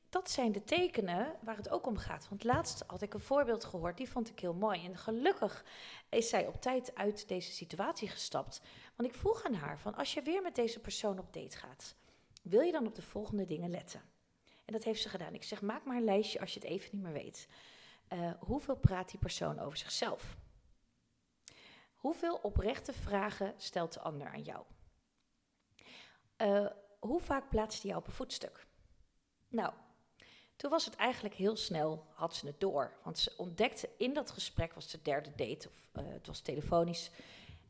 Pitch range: 185-235 Hz